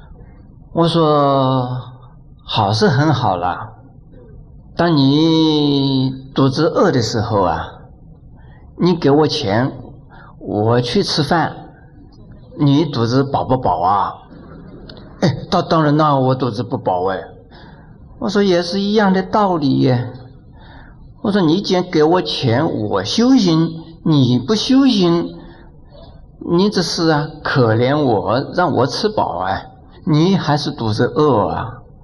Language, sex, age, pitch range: Chinese, male, 50-69, 125-160 Hz